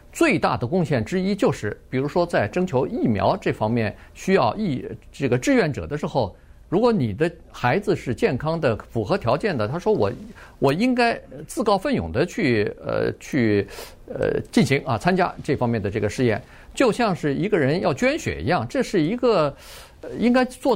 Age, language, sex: 50-69, Chinese, male